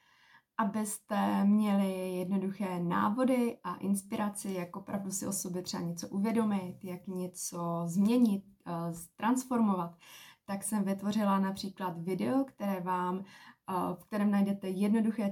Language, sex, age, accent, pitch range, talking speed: Czech, female, 20-39, native, 185-205 Hz, 105 wpm